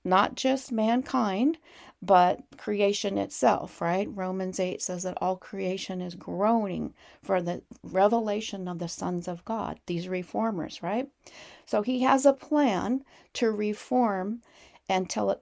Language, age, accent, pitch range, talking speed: English, 40-59, American, 185-250 Hz, 130 wpm